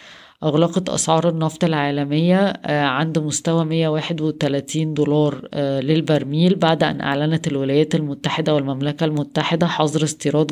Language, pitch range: Arabic, 145-160 Hz